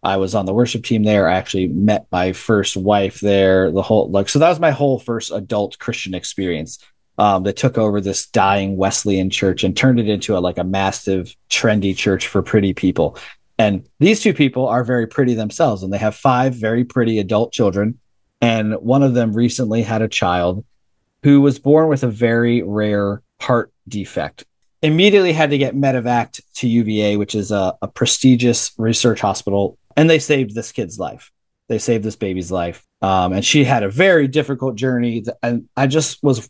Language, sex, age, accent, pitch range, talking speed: English, male, 30-49, American, 105-135 Hz, 190 wpm